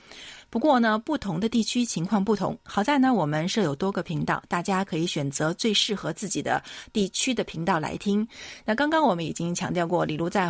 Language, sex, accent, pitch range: Chinese, female, native, 170-230 Hz